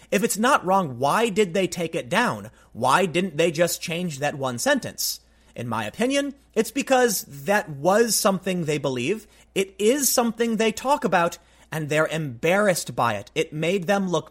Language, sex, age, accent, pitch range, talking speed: English, male, 30-49, American, 150-210 Hz, 180 wpm